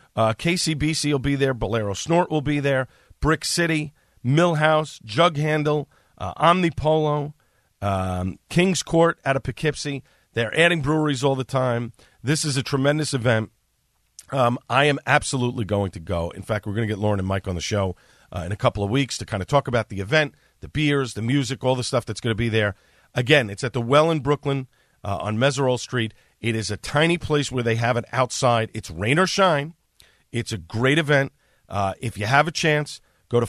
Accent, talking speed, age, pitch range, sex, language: American, 205 wpm, 40-59, 110-150 Hz, male, English